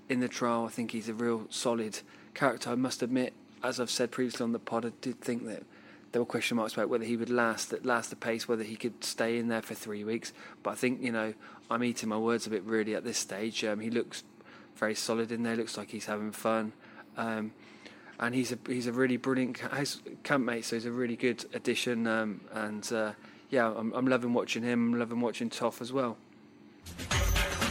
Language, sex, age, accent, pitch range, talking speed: English, male, 20-39, British, 110-120 Hz, 225 wpm